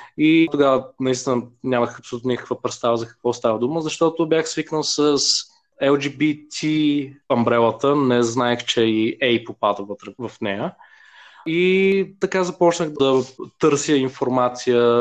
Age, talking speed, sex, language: 20-39, 120 wpm, male, Bulgarian